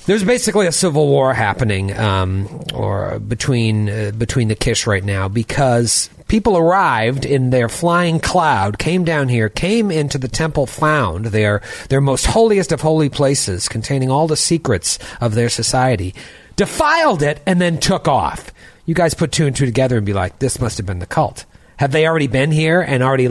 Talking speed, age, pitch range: 190 wpm, 40-59, 115-170 Hz